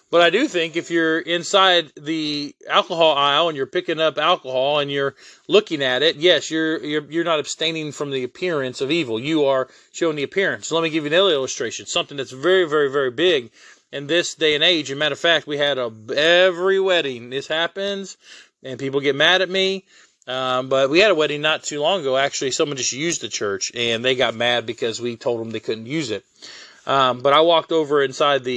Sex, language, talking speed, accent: male, English, 225 wpm, American